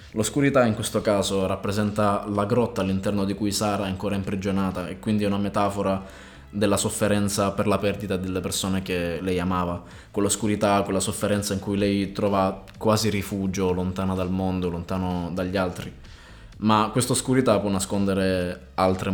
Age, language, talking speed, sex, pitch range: 20-39, Italian, 155 wpm, male, 95-105 Hz